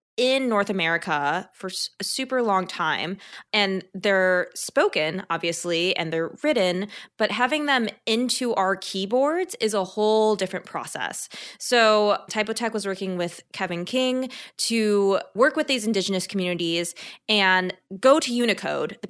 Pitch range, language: 175-220 Hz, English